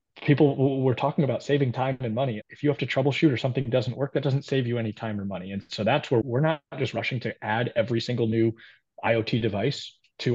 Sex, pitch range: male, 110-135 Hz